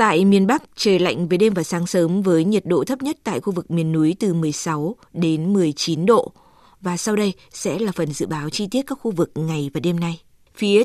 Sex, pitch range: female, 175-210 Hz